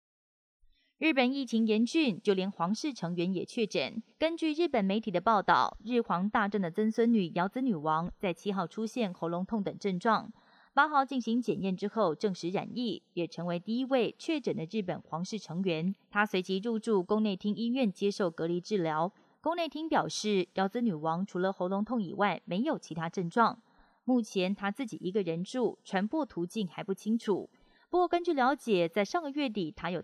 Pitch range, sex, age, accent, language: 185-235 Hz, female, 20-39, native, Chinese